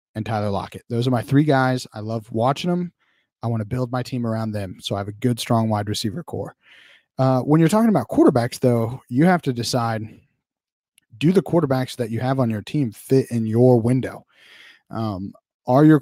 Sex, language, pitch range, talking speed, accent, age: male, English, 110-135 Hz, 210 wpm, American, 30-49